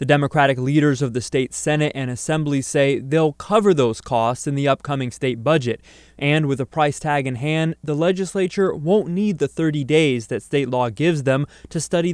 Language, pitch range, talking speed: English, 145-200 Hz, 200 wpm